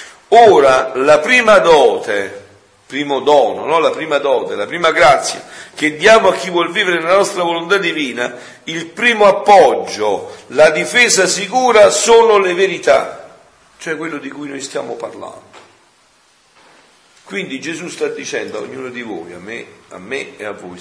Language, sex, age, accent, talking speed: Italian, male, 50-69, native, 155 wpm